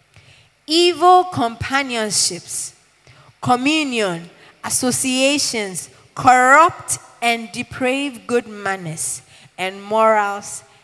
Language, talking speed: English, 60 wpm